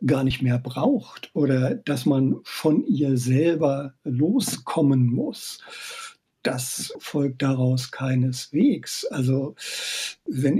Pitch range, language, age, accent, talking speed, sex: 135-170 Hz, German, 60-79, German, 100 wpm, male